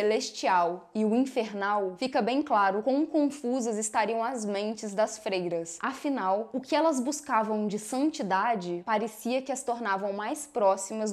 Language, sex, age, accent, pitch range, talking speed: Portuguese, female, 10-29, Brazilian, 205-265 Hz, 145 wpm